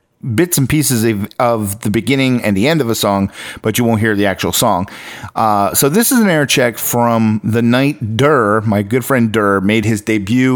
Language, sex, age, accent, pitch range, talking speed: English, male, 40-59, American, 105-125 Hz, 210 wpm